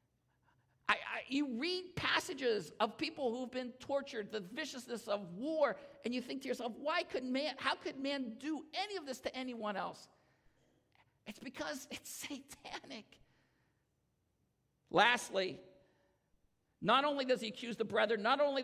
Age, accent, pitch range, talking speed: 50-69, American, 215-275 Hz, 150 wpm